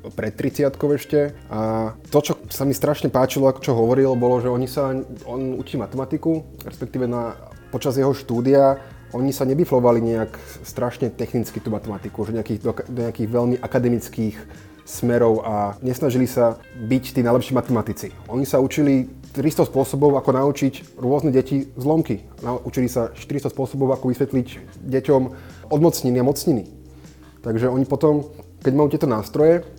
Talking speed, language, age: 145 wpm, Slovak, 20-39